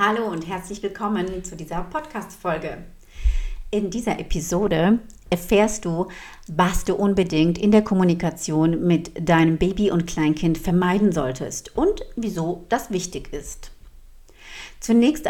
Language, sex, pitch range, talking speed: German, female, 165-200 Hz, 120 wpm